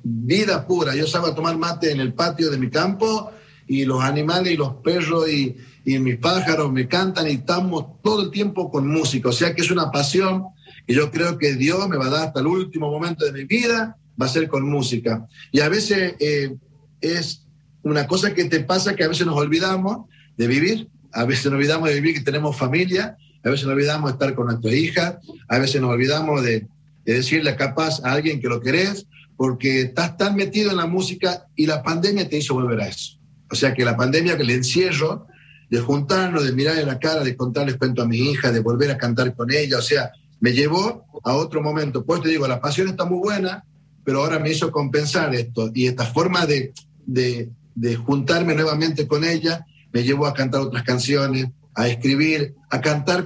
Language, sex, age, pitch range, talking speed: Spanish, male, 50-69, 135-170 Hz, 215 wpm